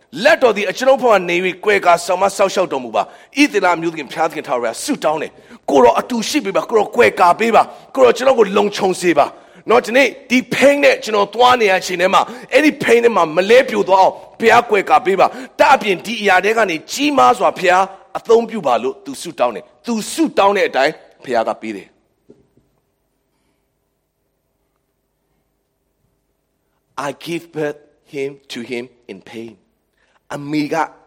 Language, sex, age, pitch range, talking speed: English, male, 40-59, 170-250 Hz, 60 wpm